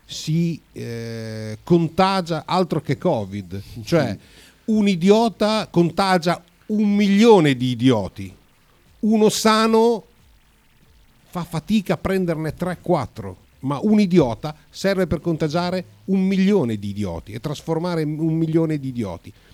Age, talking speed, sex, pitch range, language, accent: 50-69, 115 wpm, male, 125-180 Hz, Italian, native